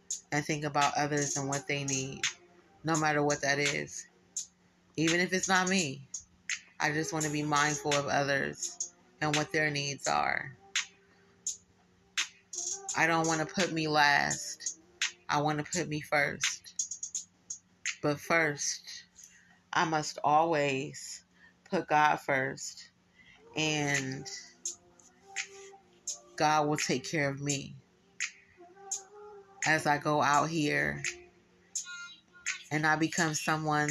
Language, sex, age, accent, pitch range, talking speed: English, female, 30-49, American, 145-175 Hz, 120 wpm